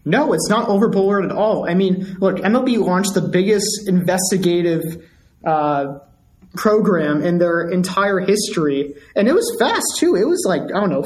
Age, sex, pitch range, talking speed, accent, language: 20-39, male, 165-210 Hz, 170 wpm, American, English